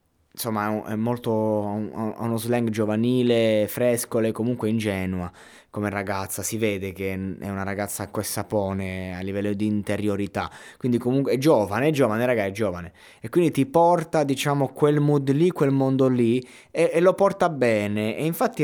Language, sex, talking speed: Italian, male, 170 wpm